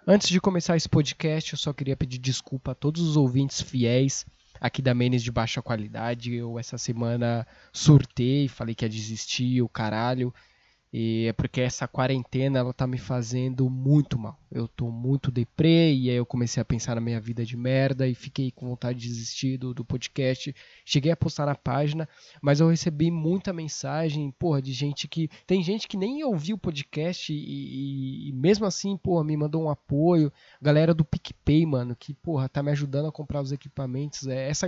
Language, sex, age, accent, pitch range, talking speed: Portuguese, male, 20-39, Brazilian, 130-160 Hz, 190 wpm